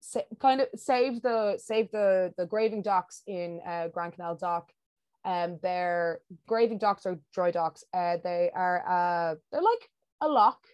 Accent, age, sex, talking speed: Irish, 20-39, female, 155 wpm